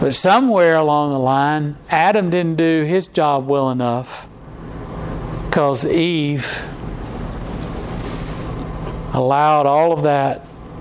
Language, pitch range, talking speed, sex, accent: English, 145-175 Hz, 100 wpm, male, American